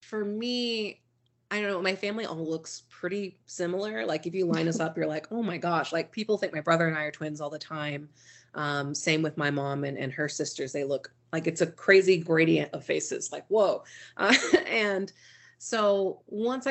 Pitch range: 150-200 Hz